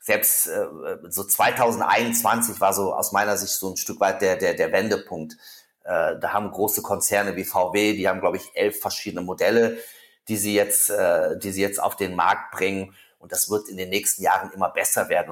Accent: German